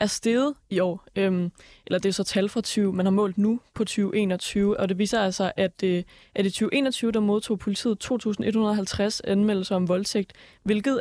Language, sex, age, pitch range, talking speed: Danish, female, 20-39, 185-220 Hz, 190 wpm